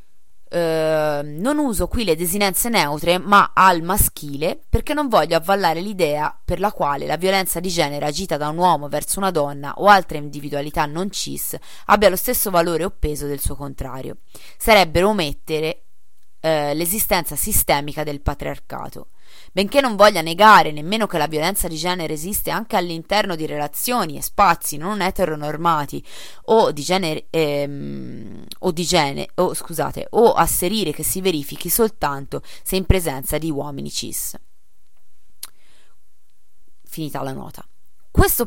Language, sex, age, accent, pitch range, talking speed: Italian, female, 20-39, native, 150-205 Hz, 145 wpm